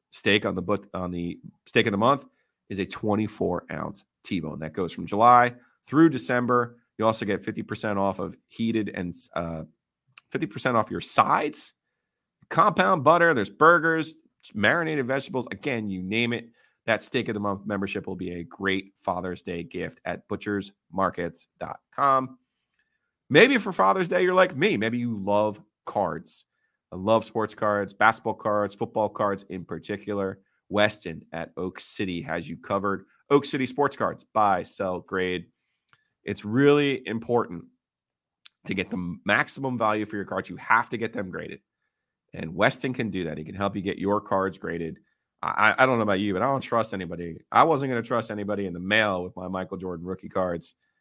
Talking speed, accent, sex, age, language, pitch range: 175 wpm, American, male, 30-49, English, 95-120 Hz